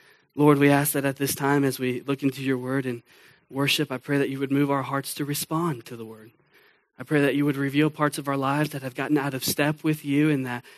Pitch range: 140-205 Hz